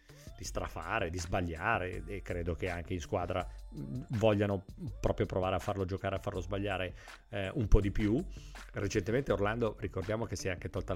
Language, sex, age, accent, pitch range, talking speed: Italian, male, 40-59, native, 90-120 Hz, 175 wpm